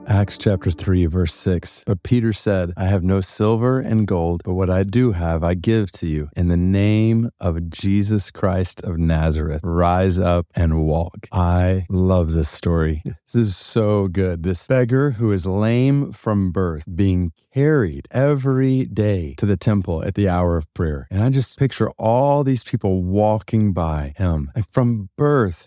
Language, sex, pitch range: English, male, 90-110 Hz